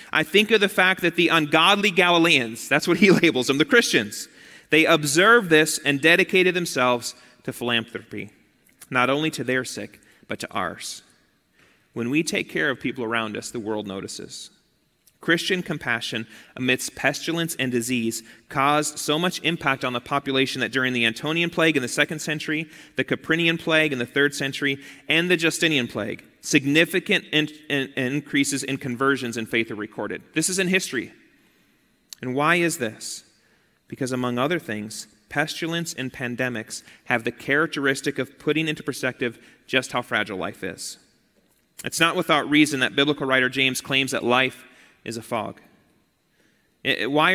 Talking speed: 160 wpm